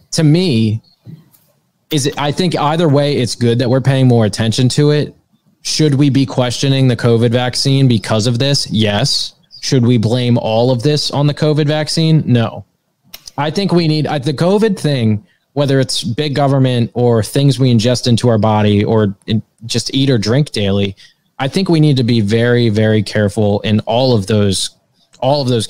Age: 20-39